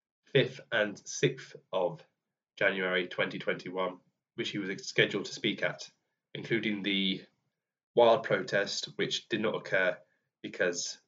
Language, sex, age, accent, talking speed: English, male, 10-29, British, 120 wpm